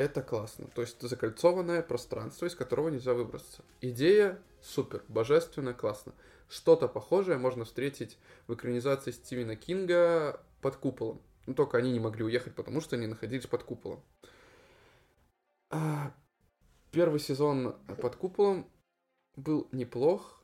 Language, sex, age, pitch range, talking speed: Russian, male, 20-39, 115-160 Hz, 125 wpm